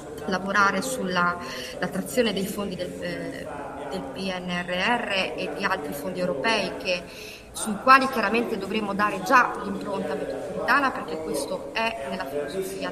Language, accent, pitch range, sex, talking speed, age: Italian, native, 180-225 Hz, female, 130 wpm, 30-49